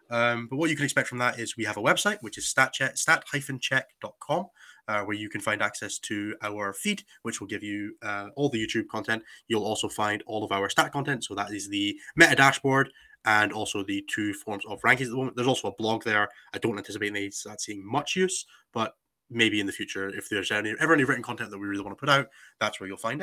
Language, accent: English, British